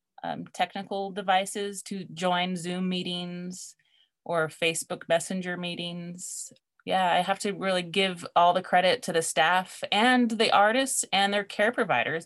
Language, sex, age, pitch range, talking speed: English, female, 30-49, 175-195 Hz, 145 wpm